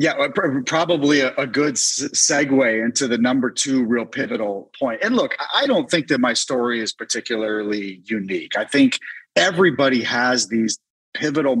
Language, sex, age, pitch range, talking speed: English, male, 30-49, 115-150 Hz, 150 wpm